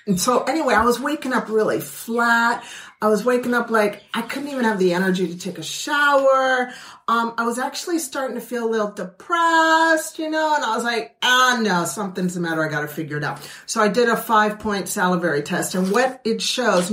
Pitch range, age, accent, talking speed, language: 180-235 Hz, 50-69, American, 225 wpm, English